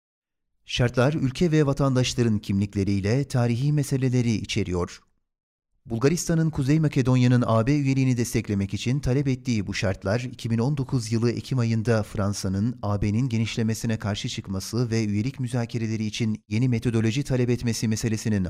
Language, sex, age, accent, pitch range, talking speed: Turkish, male, 40-59, native, 105-130 Hz, 120 wpm